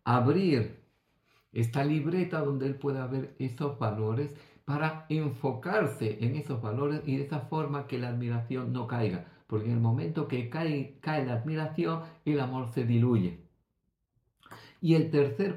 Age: 50-69